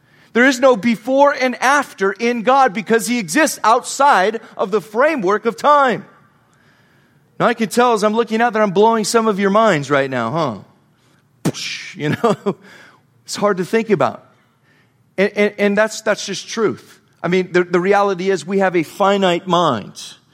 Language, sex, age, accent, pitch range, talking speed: English, male, 40-59, American, 175-230 Hz, 175 wpm